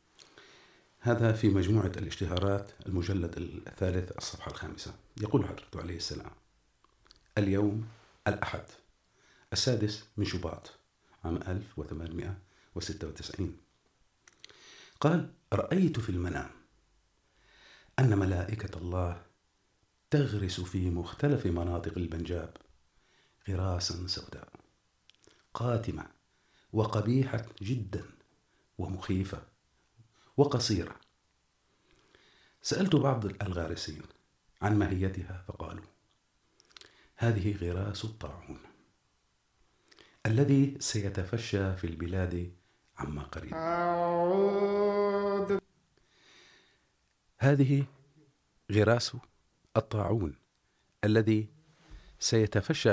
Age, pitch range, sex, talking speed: 50-69, 90-130 Hz, male, 65 wpm